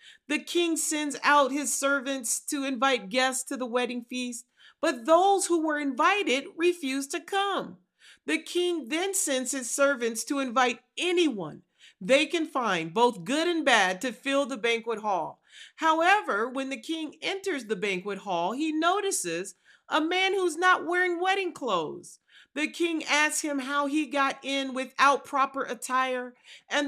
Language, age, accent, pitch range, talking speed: English, 40-59, American, 250-335 Hz, 160 wpm